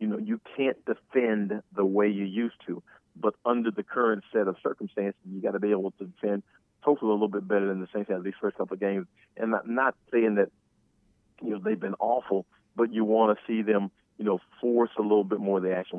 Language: English